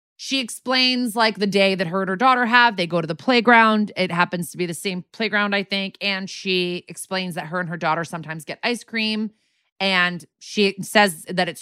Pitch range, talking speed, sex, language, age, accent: 180-225 Hz, 215 wpm, female, English, 20-39, American